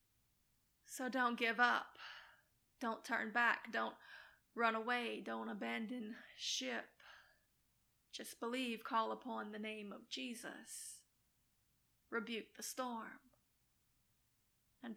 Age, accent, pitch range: 30-49, American, 220-255 Hz